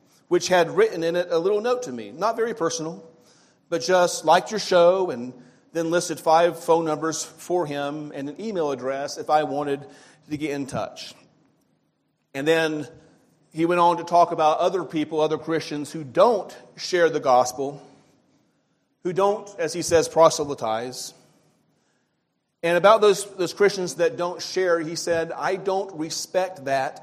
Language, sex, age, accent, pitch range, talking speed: English, male, 40-59, American, 140-180 Hz, 165 wpm